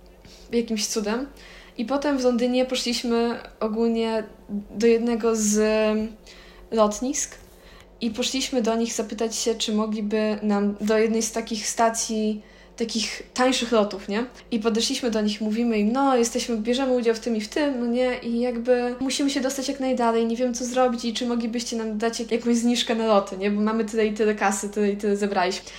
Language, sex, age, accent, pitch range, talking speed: Polish, female, 10-29, native, 210-240 Hz, 180 wpm